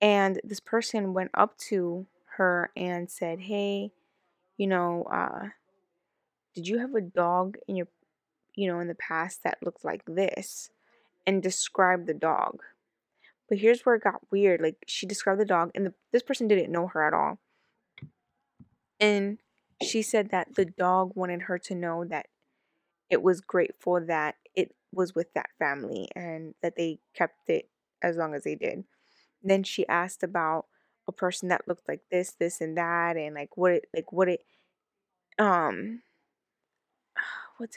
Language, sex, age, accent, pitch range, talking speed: English, female, 20-39, American, 175-205 Hz, 165 wpm